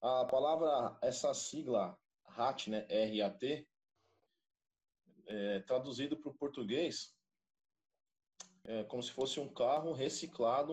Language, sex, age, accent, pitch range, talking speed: Portuguese, male, 20-39, Brazilian, 115-145 Hz, 110 wpm